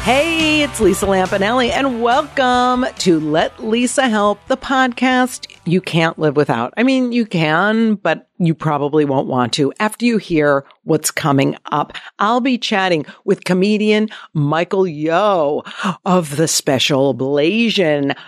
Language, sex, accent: English, female, American